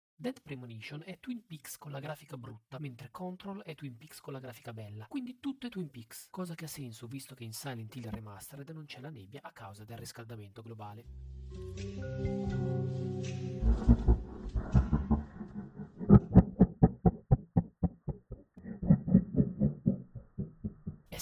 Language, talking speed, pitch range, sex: Italian, 125 wpm, 110-155 Hz, male